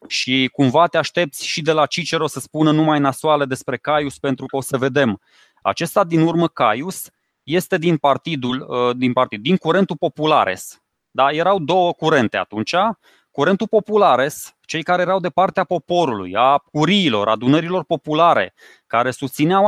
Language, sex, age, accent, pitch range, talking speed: Romanian, male, 20-39, native, 135-175 Hz, 150 wpm